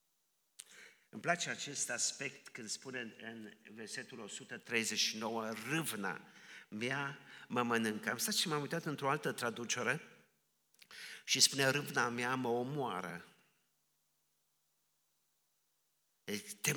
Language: Romanian